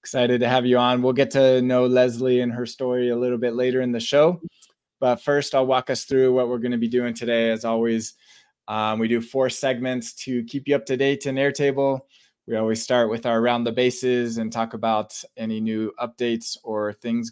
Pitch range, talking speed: 110-130 Hz, 220 wpm